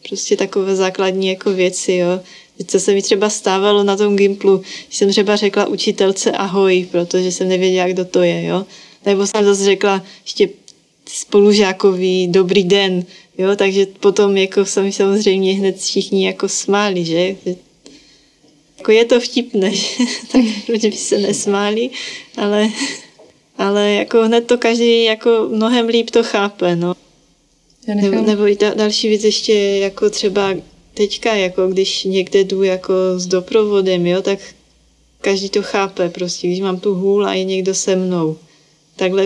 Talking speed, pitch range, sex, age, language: 150 wpm, 185-205 Hz, female, 20-39, Czech